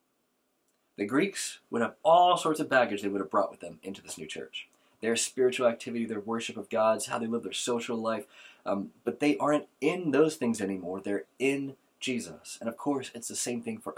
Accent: American